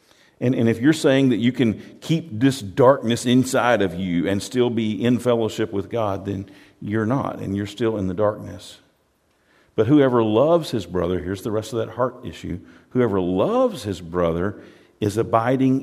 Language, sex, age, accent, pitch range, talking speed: English, male, 50-69, American, 105-135 Hz, 180 wpm